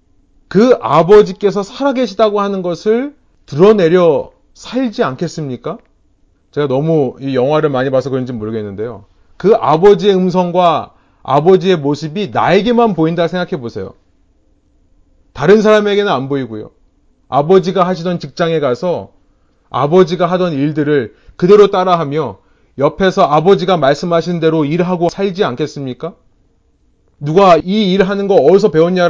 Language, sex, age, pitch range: Korean, male, 30-49, 135-205 Hz